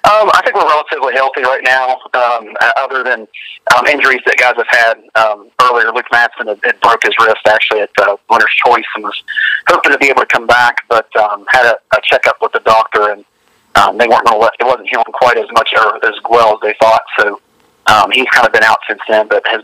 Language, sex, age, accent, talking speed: English, male, 40-59, American, 240 wpm